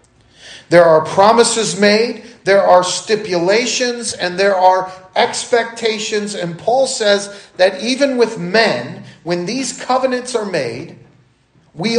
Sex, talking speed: male, 120 wpm